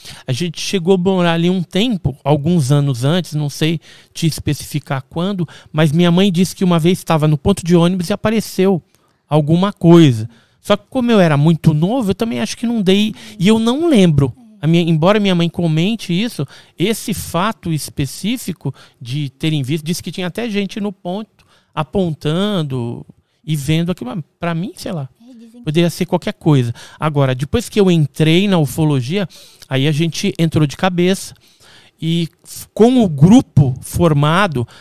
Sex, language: male, Portuguese